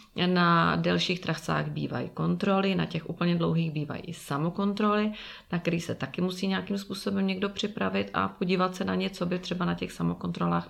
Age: 30-49